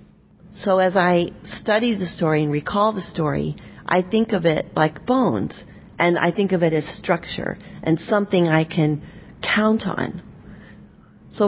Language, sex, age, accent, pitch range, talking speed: English, female, 40-59, American, 165-210 Hz, 155 wpm